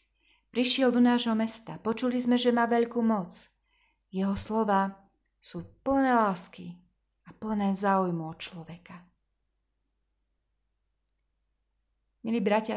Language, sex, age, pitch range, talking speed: Slovak, female, 20-39, 175-230 Hz, 105 wpm